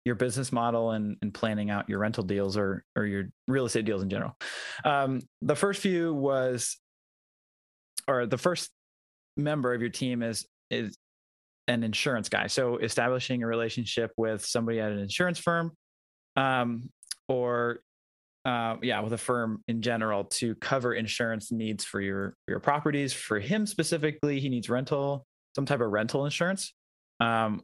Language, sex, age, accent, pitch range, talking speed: English, male, 20-39, American, 105-140 Hz, 160 wpm